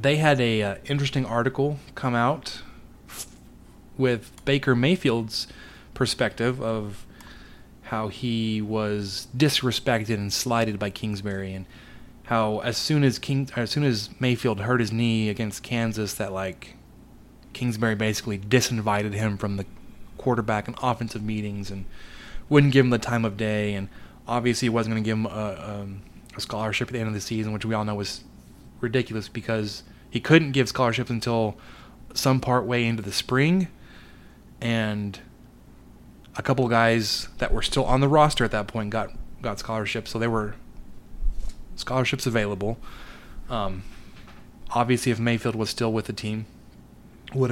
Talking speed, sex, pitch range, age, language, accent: 155 wpm, male, 105-125 Hz, 20-39, English, American